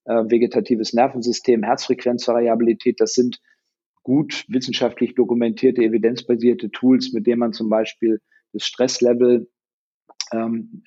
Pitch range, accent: 110-130 Hz, German